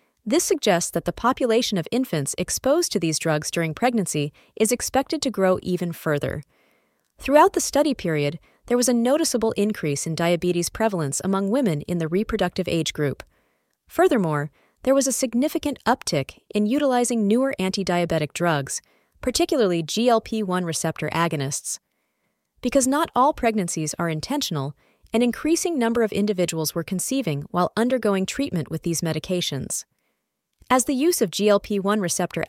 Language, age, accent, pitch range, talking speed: English, 30-49, American, 165-245 Hz, 145 wpm